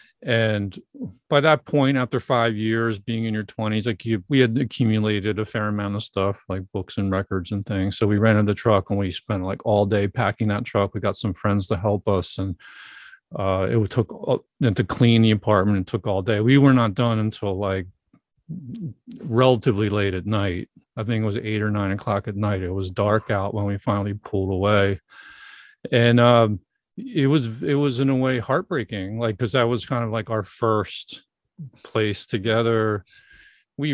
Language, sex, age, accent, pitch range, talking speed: English, male, 40-59, American, 105-125 Hz, 200 wpm